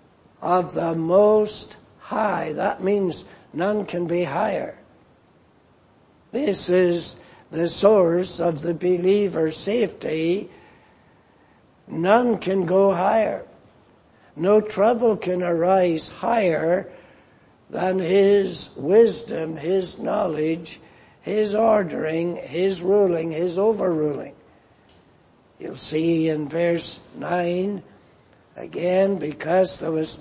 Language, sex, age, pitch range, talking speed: English, male, 60-79, 165-200 Hz, 95 wpm